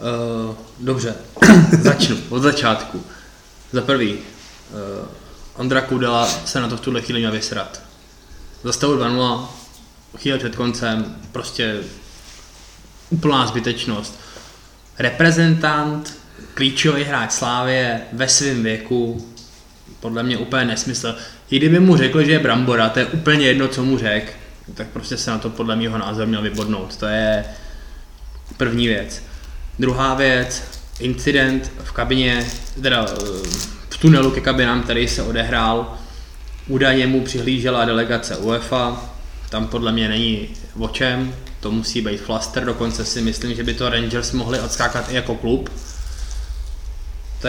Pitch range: 110-130 Hz